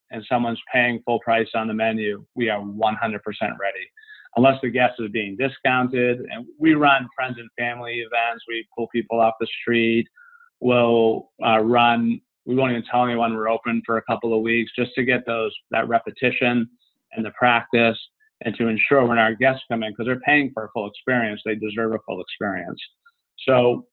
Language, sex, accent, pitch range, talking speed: English, male, American, 110-125 Hz, 190 wpm